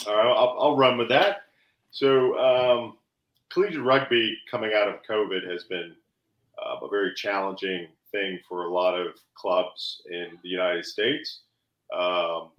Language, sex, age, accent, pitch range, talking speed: English, male, 40-59, American, 95-125 Hz, 155 wpm